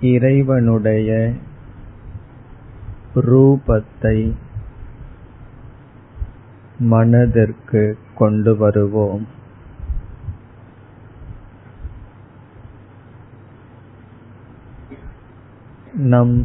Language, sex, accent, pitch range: Tamil, male, native, 105-120 Hz